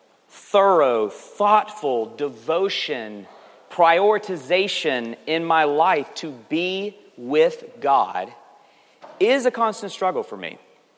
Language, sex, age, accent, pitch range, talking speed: English, male, 40-59, American, 135-210 Hz, 95 wpm